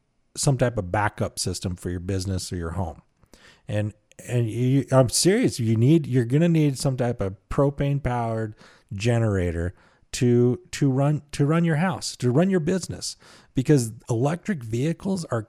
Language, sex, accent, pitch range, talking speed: English, male, American, 105-140 Hz, 165 wpm